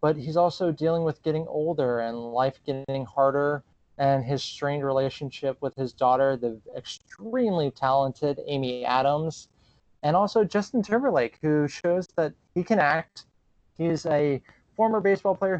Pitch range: 130-165 Hz